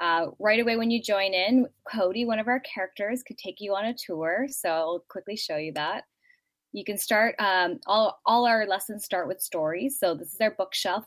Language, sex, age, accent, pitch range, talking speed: English, female, 10-29, American, 175-220 Hz, 215 wpm